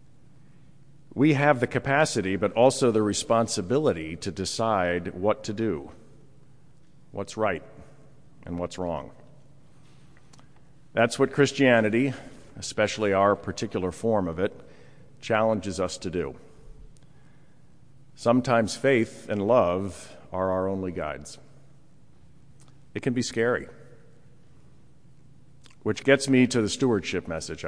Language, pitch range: English, 105-140 Hz